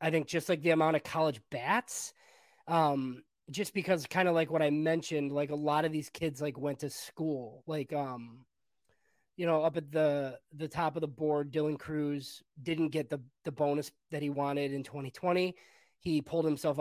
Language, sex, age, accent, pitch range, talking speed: English, male, 20-39, American, 140-165 Hz, 195 wpm